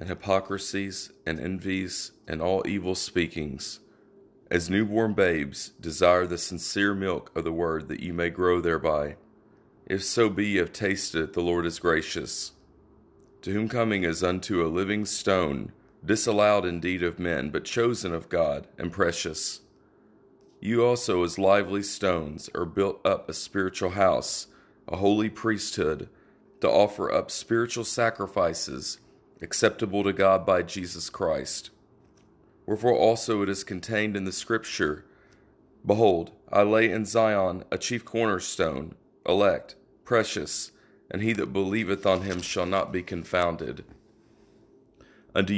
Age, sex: 40-59, male